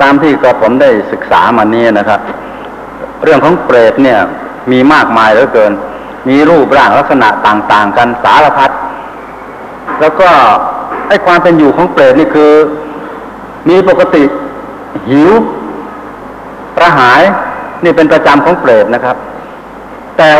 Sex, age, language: male, 60-79, Thai